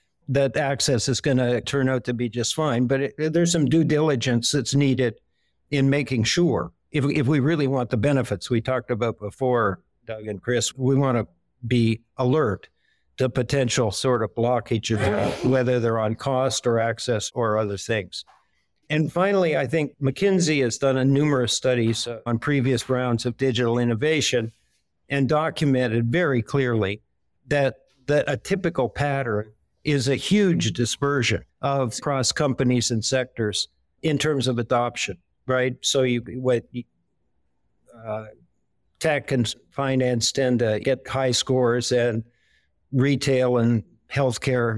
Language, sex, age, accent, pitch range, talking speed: English, male, 60-79, American, 120-140 Hz, 150 wpm